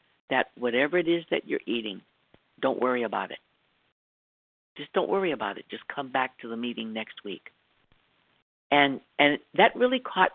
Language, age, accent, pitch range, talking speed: English, 60-79, American, 120-170 Hz, 170 wpm